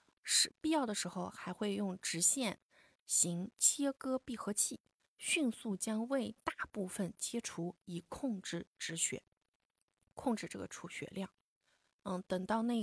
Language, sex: Chinese, female